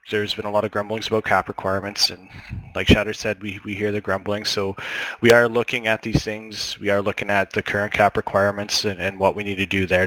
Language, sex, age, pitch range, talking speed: English, male, 20-39, 95-110 Hz, 245 wpm